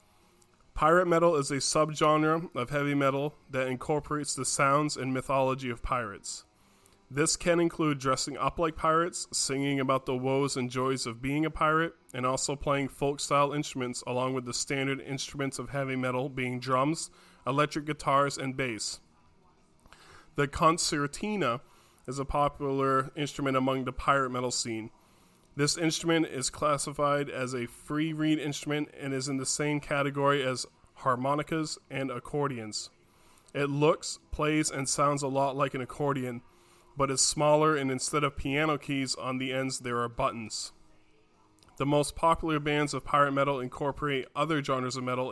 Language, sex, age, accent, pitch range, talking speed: English, male, 20-39, American, 130-150 Hz, 155 wpm